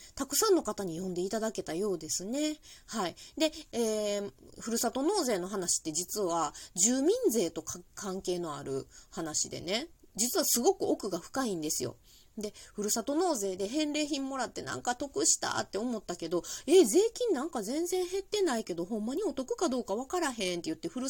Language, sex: Japanese, female